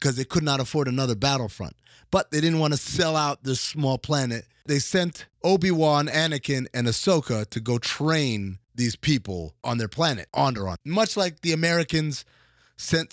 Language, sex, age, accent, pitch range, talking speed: English, male, 30-49, American, 110-145 Hz, 170 wpm